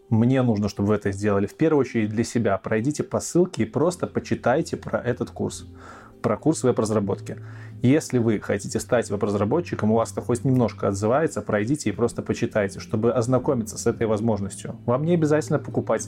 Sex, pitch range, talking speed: male, 110-130 Hz, 175 wpm